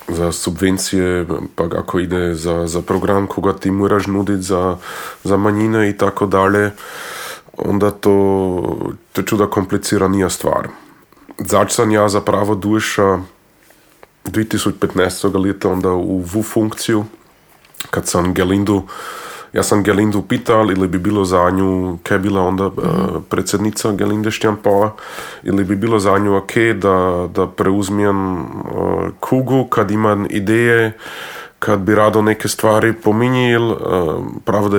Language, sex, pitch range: Croatian, male, 95-105 Hz